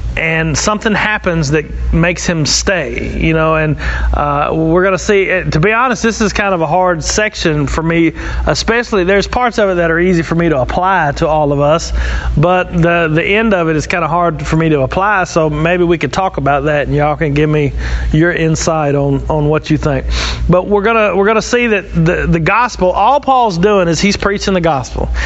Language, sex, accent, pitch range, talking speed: English, male, American, 155-200 Hz, 230 wpm